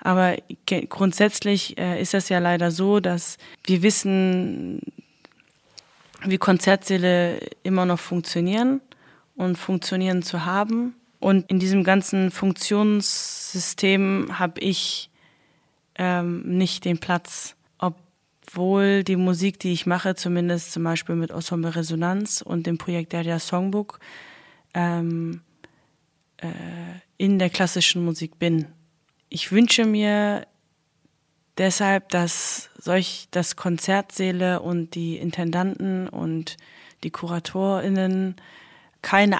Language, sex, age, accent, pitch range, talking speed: German, female, 20-39, German, 170-190 Hz, 105 wpm